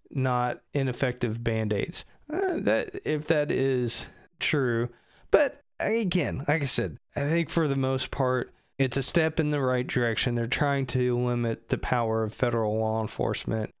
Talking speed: 165 wpm